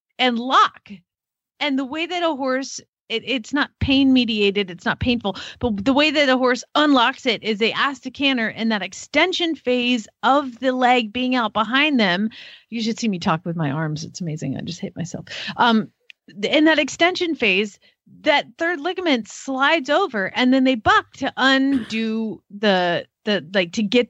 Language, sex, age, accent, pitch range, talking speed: English, female, 30-49, American, 220-280 Hz, 185 wpm